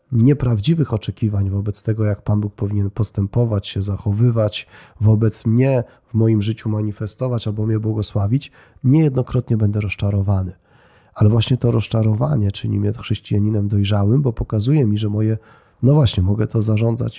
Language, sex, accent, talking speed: Polish, male, native, 145 wpm